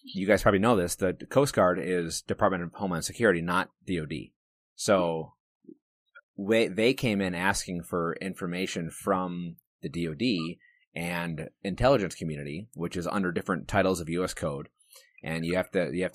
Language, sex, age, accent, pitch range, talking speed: English, male, 30-49, American, 85-105 Hz, 160 wpm